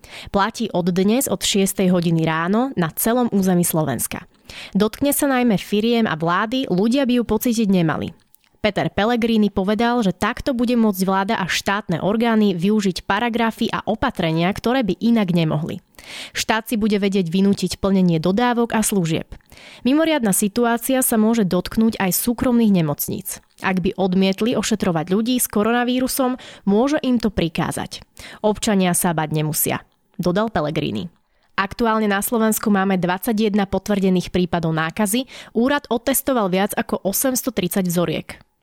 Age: 20-39